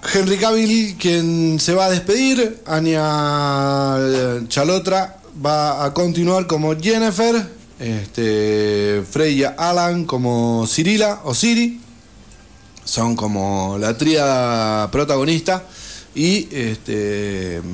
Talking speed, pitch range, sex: 95 wpm, 120-175 Hz, male